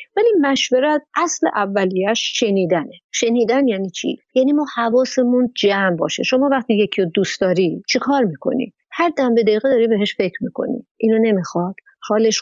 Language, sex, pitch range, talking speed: Persian, female, 200-260 Hz, 155 wpm